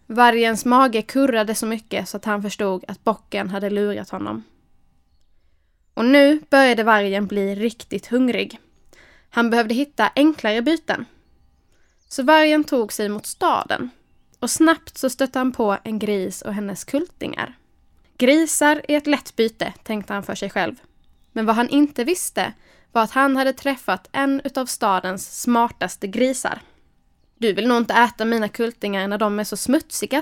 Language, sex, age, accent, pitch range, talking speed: Swedish, female, 10-29, native, 210-275 Hz, 160 wpm